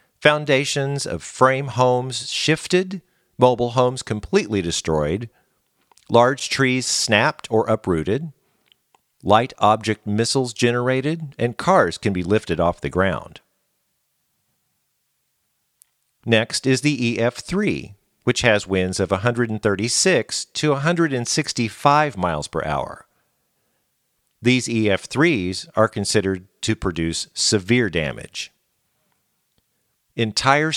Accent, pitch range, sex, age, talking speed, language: American, 105-135 Hz, male, 50-69, 95 wpm, English